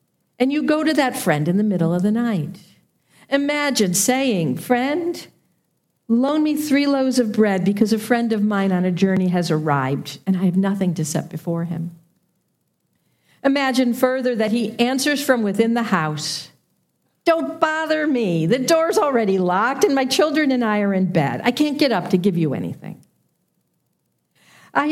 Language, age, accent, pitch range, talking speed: English, 50-69, American, 175-255 Hz, 175 wpm